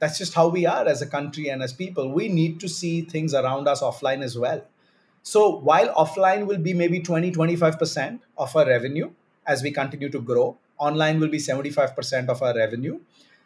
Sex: male